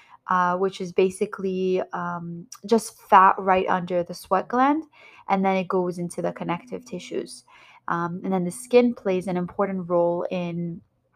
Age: 20-39